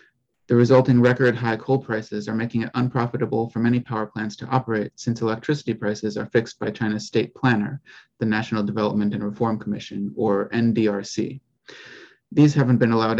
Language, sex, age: English, male, 30-49